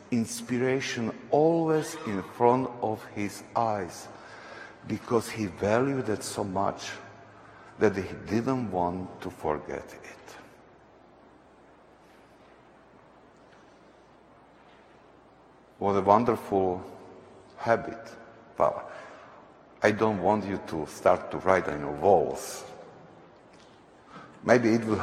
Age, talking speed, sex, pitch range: 60-79, 95 wpm, male, 105-135 Hz